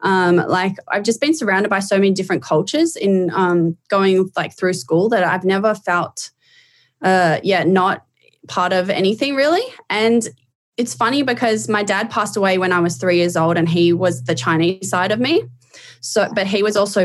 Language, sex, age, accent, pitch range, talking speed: English, female, 20-39, Australian, 170-195 Hz, 195 wpm